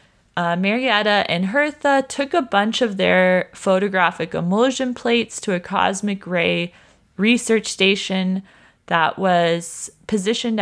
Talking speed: 120 wpm